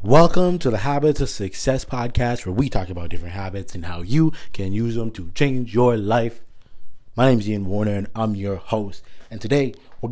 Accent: American